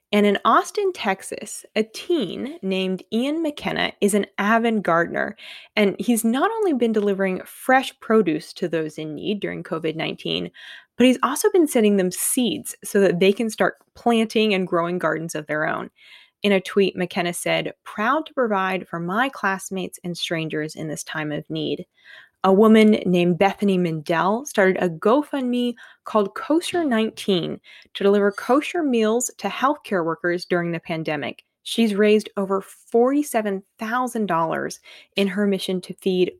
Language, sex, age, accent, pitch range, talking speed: English, female, 20-39, American, 185-240 Hz, 155 wpm